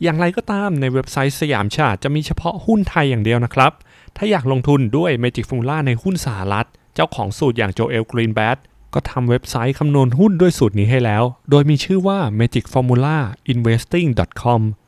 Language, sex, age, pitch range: Thai, male, 20-39, 115-155 Hz